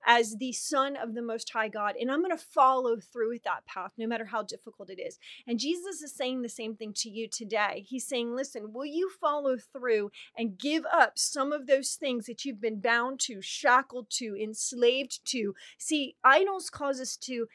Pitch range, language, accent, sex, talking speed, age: 225-275 Hz, English, American, female, 205 wpm, 30-49